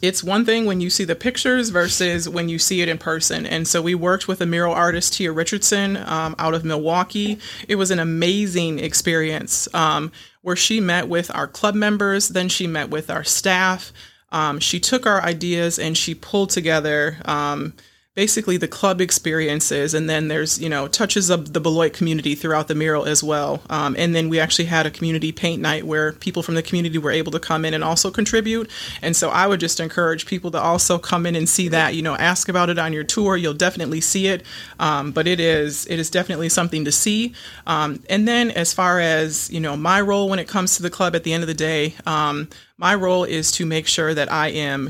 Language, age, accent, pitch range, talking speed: English, 30-49, American, 155-185 Hz, 225 wpm